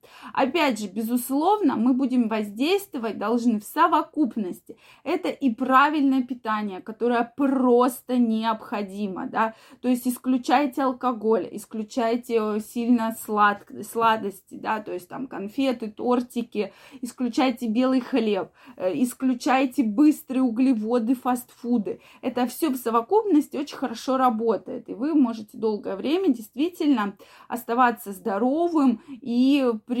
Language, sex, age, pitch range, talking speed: Russian, female, 20-39, 220-265 Hz, 110 wpm